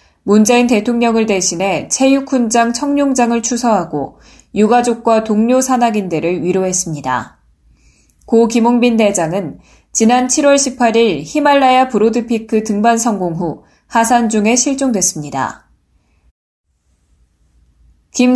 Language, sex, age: Korean, female, 20-39